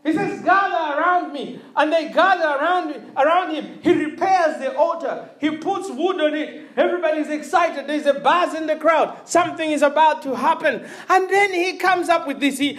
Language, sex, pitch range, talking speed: English, male, 225-315 Hz, 190 wpm